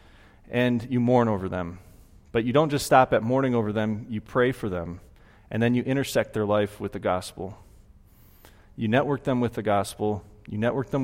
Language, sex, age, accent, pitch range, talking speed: English, male, 30-49, American, 100-130 Hz, 195 wpm